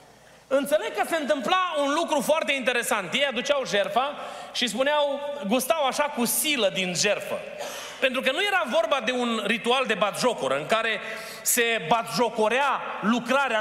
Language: Romanian